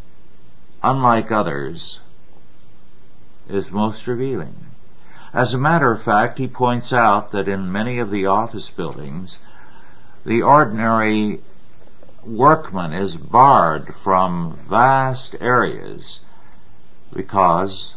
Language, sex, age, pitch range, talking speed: English, male, 60-79, 90-110 Hz, 95 wpm